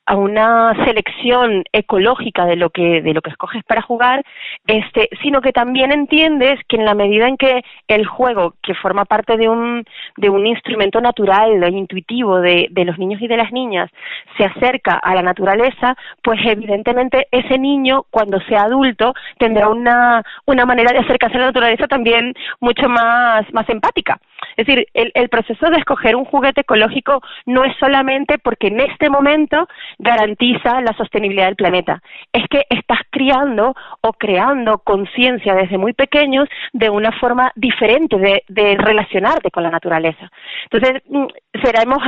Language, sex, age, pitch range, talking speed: Spanish, female, 30-49, 205-260 Hz, 165 wpm